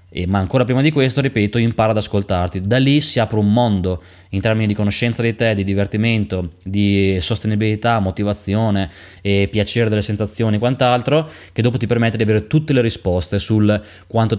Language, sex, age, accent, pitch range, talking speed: Italian, male, 20-39, native, 100-120 Hz, 180 wpm